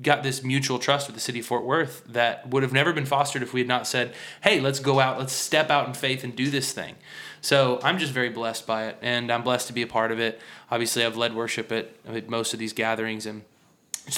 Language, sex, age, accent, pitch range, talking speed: English, male, 20-39, American, 120-140 Hz, 260 wpm